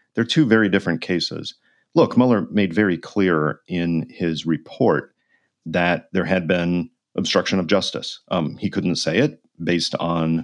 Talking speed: 155 wpm